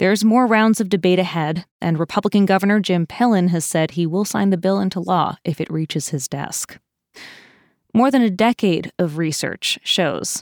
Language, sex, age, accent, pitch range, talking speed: English, female, 20-39, American, 160-200 Hz, 185 wpm